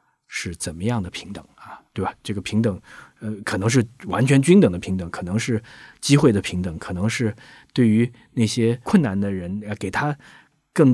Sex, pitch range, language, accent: male, 100-135 Hz, Chinese, native